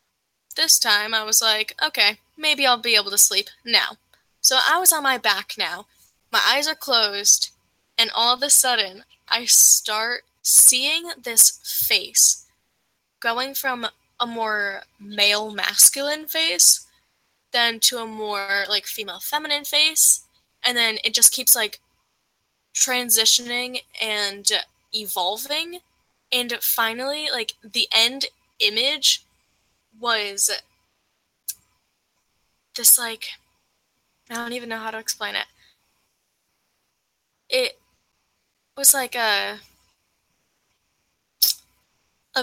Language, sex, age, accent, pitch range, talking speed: English, female, 10-29, American, 210-260 Hz, 110 wpm